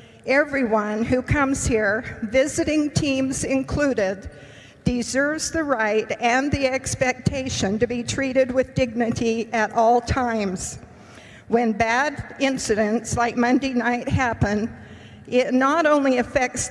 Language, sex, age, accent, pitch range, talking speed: English, female, 50-69, American, 225-260 Hz, 115 wpm